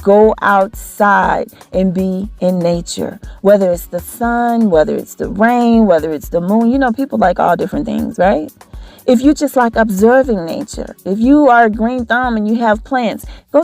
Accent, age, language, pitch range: American, 40-59, English, 185-250 Hz